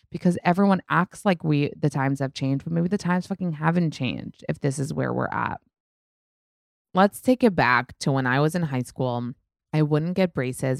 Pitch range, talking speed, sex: 130-165 Hz, 205 wpm, female